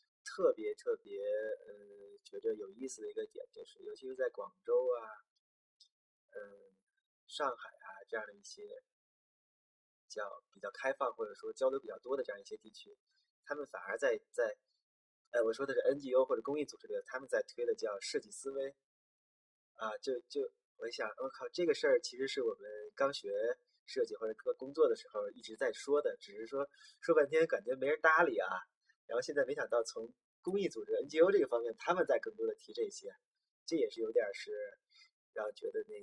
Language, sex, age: Chinese, male, 20-39